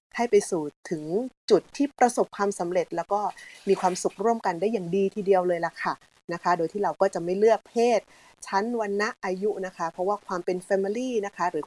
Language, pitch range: Thai, 175-220 Hz